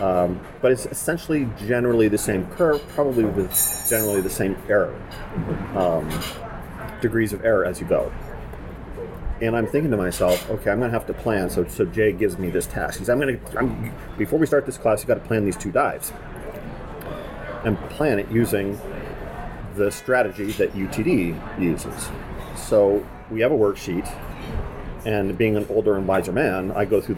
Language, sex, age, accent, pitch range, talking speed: English, male, 40-59, American, 95-120 Hz, 170 wpm